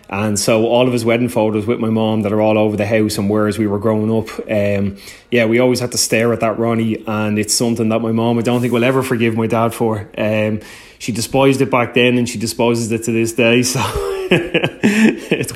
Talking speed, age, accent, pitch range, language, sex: 245 wpm, 20-39, Irish, 105-120 Hz, English, male